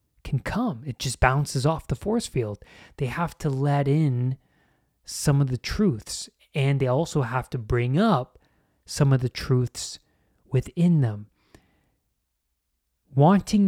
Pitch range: 105-145 Hz